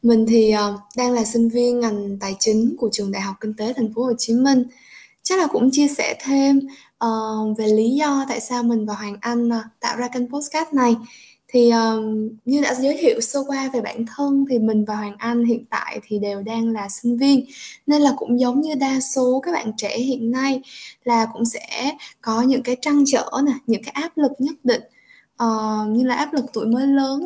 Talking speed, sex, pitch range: 215 wpm, female, 225-275 Hz